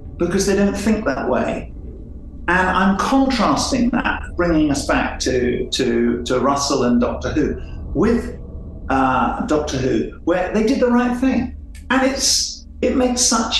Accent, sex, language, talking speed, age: British, male, English, 155 wpm, 50-69